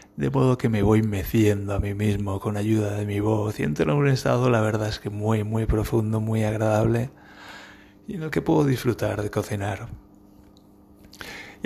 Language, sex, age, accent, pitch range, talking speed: Spanish, male, 30-49, Spanish, 105-120 Hz, 190 wpm